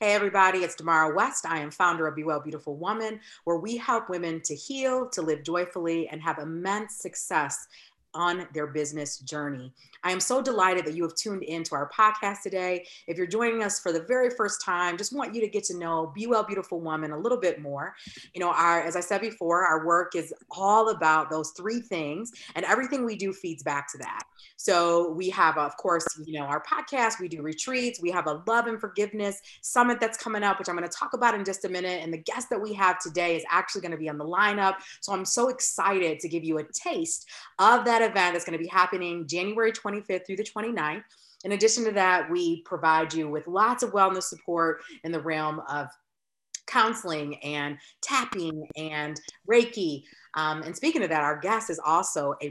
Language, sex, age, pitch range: English, female, 30-49, 160-210 Hz